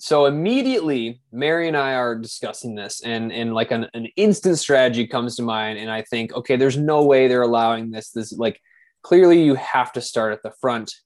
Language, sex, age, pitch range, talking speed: English, male, 20-39, 115-155 Hz, 205 wpm